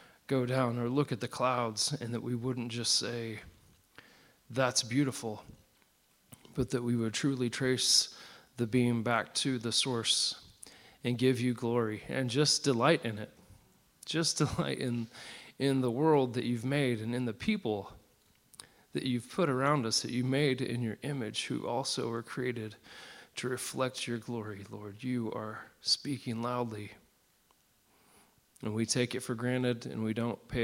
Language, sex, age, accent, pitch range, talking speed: English, male, 40-59, American, 110-130 Hz, 165 wpm